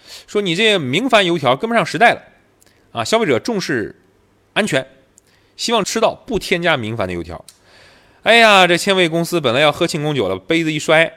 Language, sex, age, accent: Chinese, male, 20-39, native